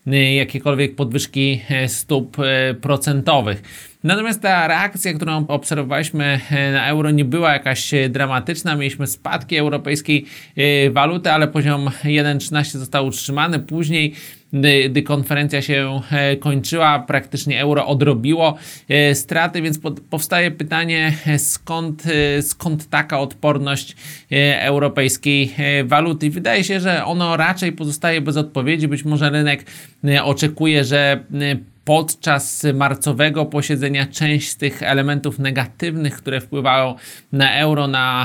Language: Polish